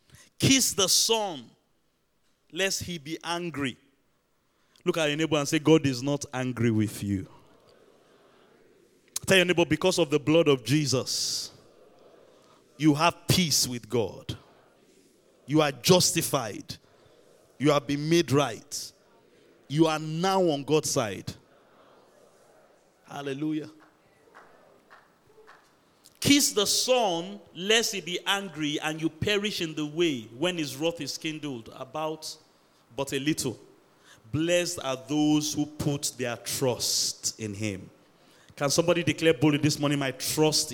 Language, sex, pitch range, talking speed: English, male, 135-170 Hz, 130 wpm